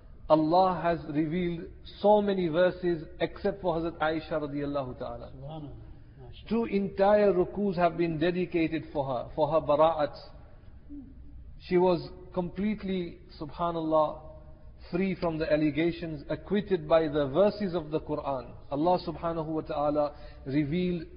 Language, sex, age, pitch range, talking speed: English, male, 50-69, 145-180 Hz, 120 wpm